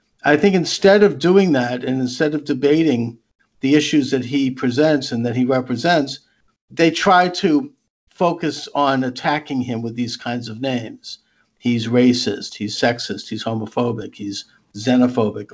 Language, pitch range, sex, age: English, 125-155 Hz, male, 50-69